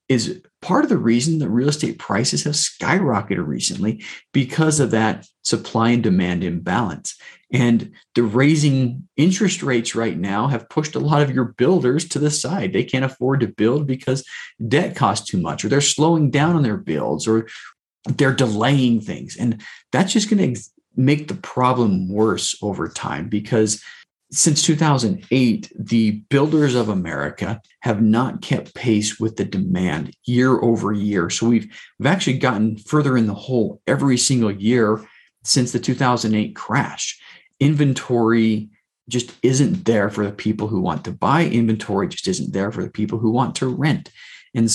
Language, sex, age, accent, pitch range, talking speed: English, male, 40-59, American, 110-140 Hz, 165 wpm